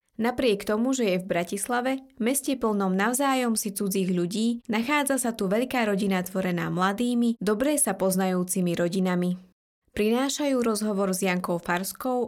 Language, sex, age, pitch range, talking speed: Slovak, female, 20-39, 185-235 Hz, 135 wpm